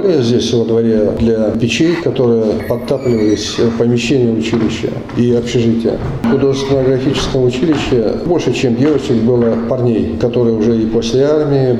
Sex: male